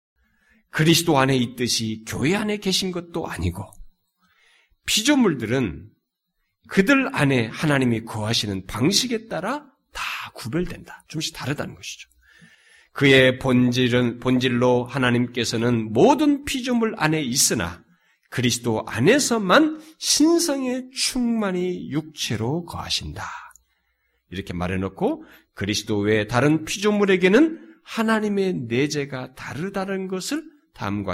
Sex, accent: male, native